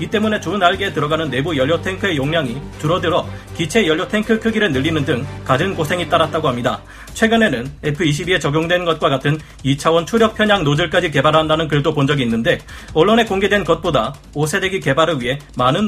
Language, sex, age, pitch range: Korean, male, 40-59, 140-195 Hz